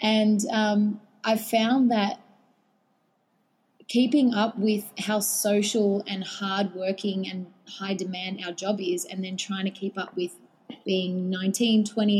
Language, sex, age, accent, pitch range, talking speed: English, female, 20-39, Australian, 190-215 Hz, 145 wpm